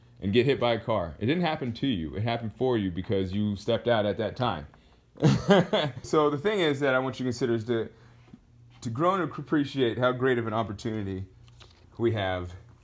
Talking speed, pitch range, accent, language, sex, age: 210 wpm, 105-135 Hz, American, English, male, 30-49